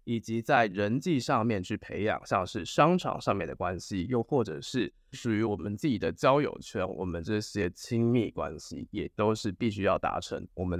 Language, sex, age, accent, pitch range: Chinese, male, 20-39, native, 100-125 Hz